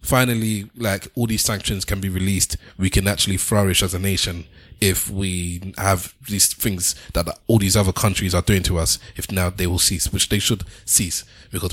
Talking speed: 200 wpm